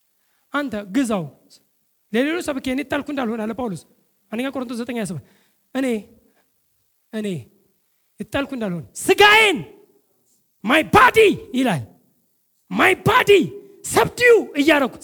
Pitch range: 240-385 Hz